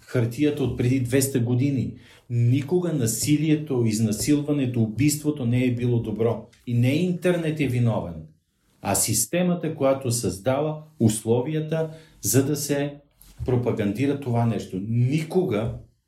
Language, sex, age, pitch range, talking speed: Bulgarian, male, 50-69, 110-145 Hz, 115 wpm